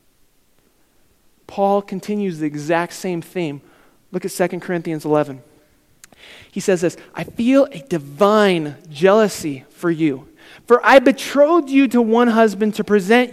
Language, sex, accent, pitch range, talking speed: English, male, American, 190-255 Hz, 135 wpm